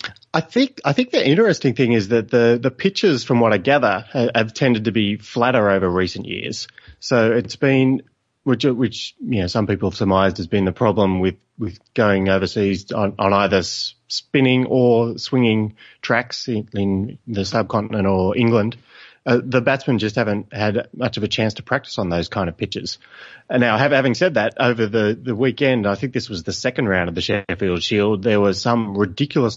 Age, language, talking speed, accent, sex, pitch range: 30-49, English, 200 wpm, Australian, male, 100-125 Hz